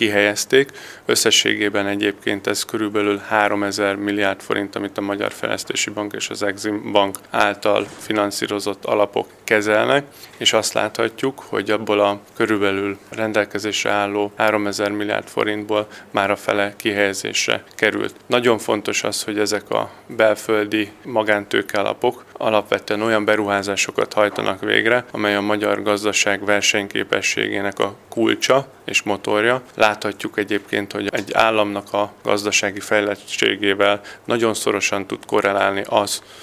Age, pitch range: 30-49, 100-105 Hz